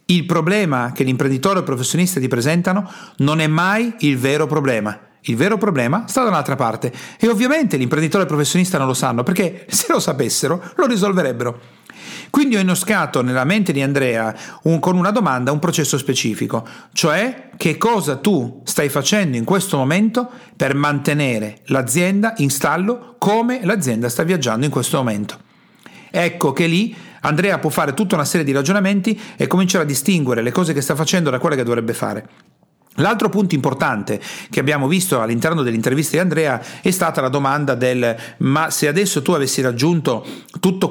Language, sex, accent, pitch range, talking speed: Italian, male, native, 135-195 Hz, 175 wpm